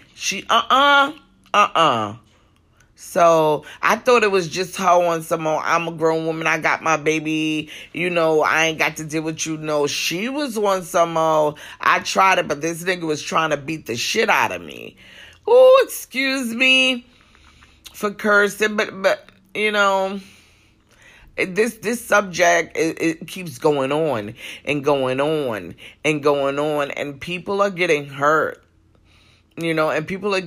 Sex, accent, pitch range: female, American, 145-190 Hz